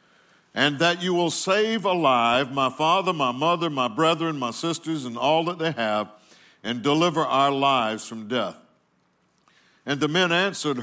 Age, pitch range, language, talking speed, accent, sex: 60-79, 125-155 Hz, English, 160 wpm, American, male